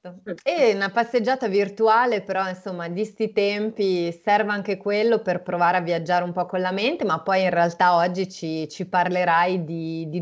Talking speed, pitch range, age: 180 wpm, 160-190 Hz, 30-49